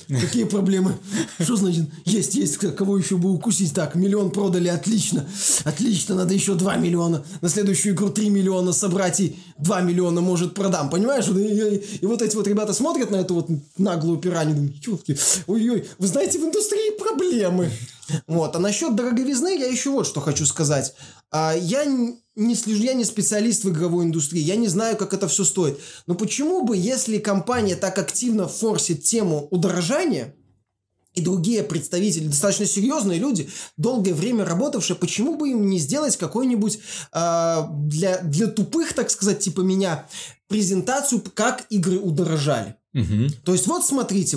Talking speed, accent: 160 wpm, native